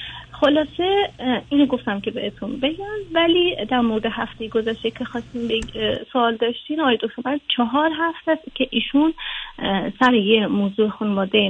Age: 30-49